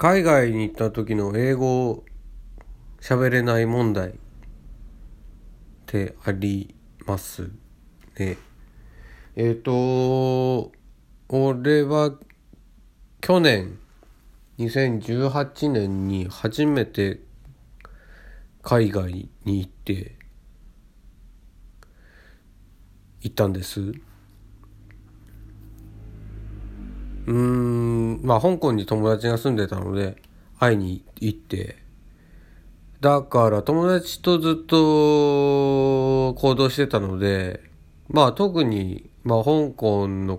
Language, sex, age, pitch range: Japanese, male, 50-69, 100-130 Hz